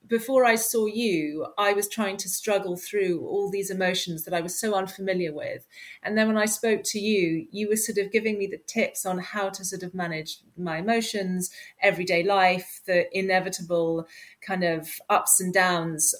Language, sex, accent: English, female, British